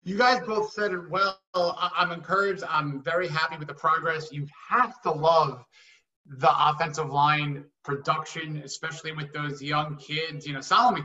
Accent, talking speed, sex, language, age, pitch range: American, 165 wpm, male, English, 30-49, 145-180 Hz